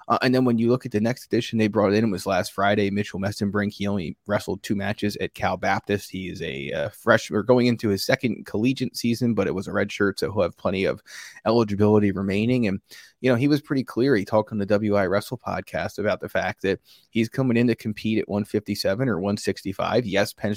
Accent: American